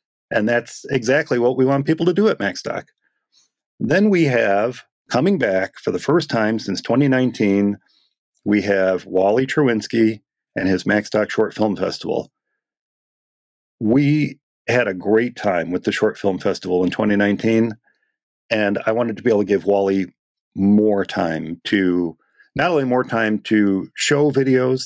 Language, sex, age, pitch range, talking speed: English, male, 40-59, 100-140 Hz, 150 wpm